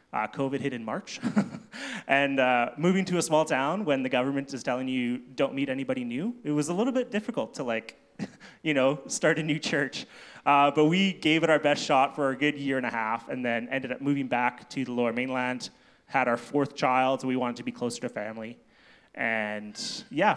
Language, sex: English, male